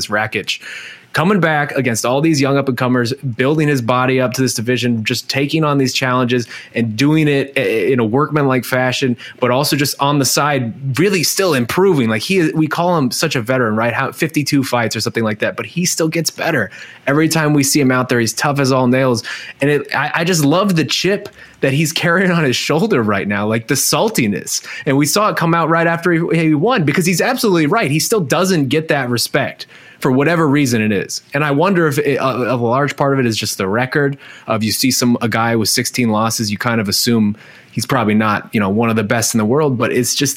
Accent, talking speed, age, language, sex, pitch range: American, 240 wpm, 20-39, English, male, 115-150 Hz